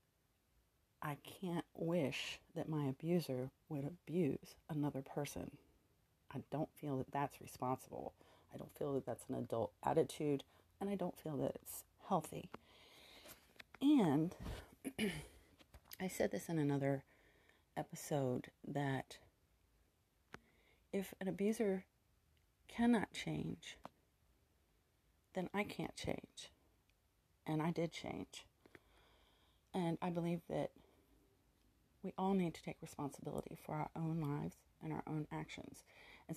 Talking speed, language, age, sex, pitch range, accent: 115 wpm, English, 40-59, female, 135-180 Hz, American